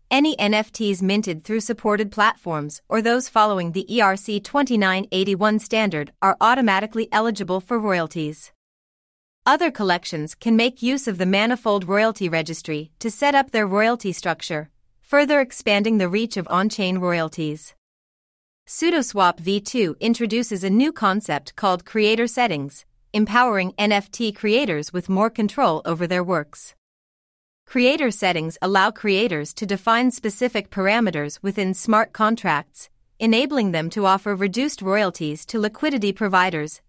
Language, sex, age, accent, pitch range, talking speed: English, female, 40-59, American, 180-230 Hz, 125 wpm